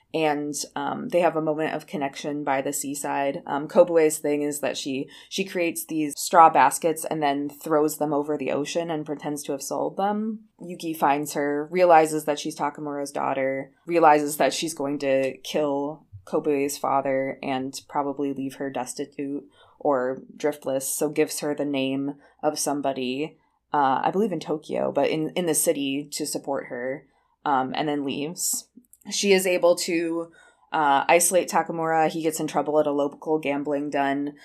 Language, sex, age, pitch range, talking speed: English, female, 20-39, 140-160 Hz, 170 wpm